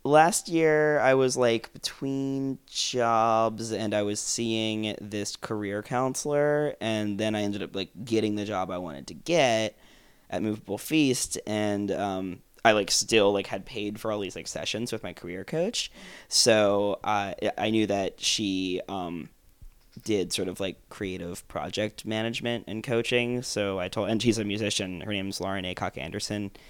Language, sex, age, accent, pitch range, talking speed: English, male, 20-39, American, 95-115 Hz, 170 wpm